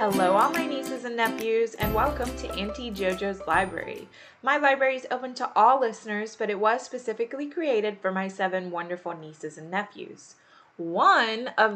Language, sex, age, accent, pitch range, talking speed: English, female, 20-39, American, 185-250 Hz, 170 wpm